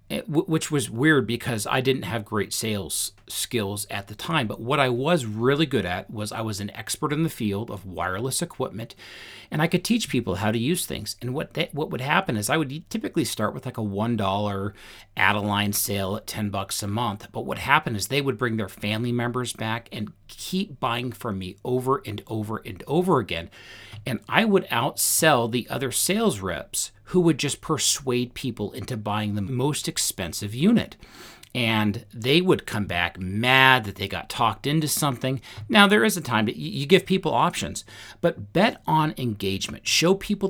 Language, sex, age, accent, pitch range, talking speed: English, male, 40-59, American, 105-150 Hz, 195 wpm